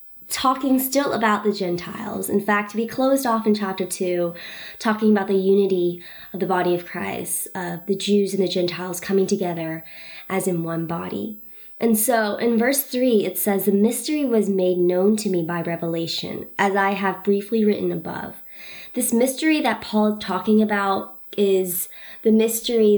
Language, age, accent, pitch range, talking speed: English, 20-39, American, 190-240 Hz, 175 wpm